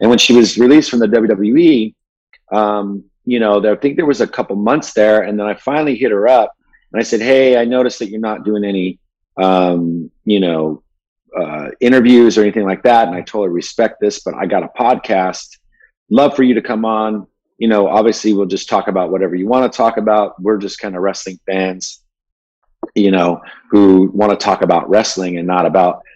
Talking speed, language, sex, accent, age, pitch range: 210 wpm, English, male, American, 40-59, 95-115 Hz